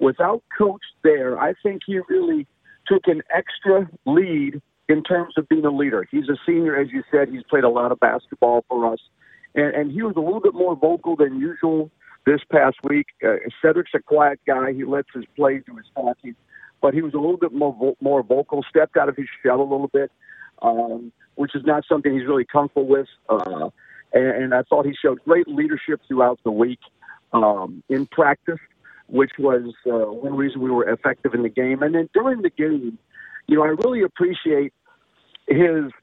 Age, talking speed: 50-69, 200 wpm